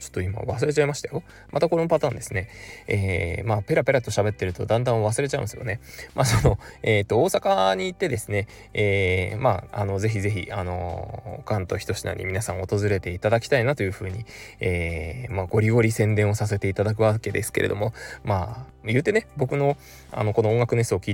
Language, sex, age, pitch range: Japanese, male, 20-39, 95-115 Hz